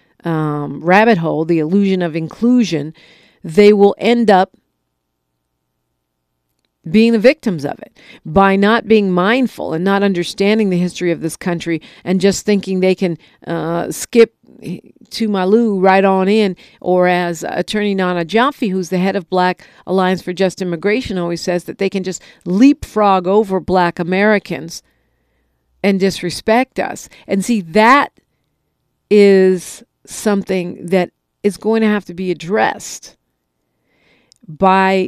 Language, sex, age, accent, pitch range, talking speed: English, female, 50-69, American, 175-220 Hz, 140 wpm